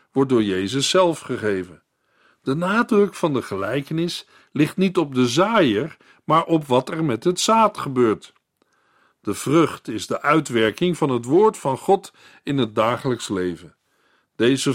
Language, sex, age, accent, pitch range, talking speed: Dutch, male, 50-69, Dutch, 125-185 Hz, 155 wpm